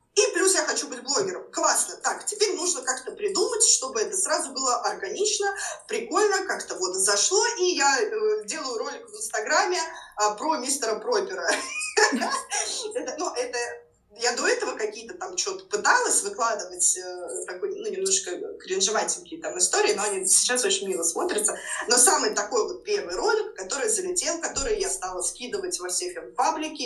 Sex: female